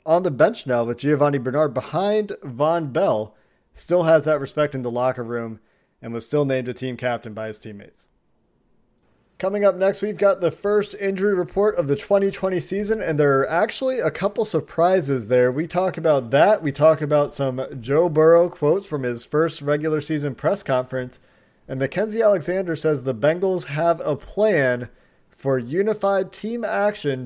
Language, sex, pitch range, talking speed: English, male, 135-190 Hz, 175 wpm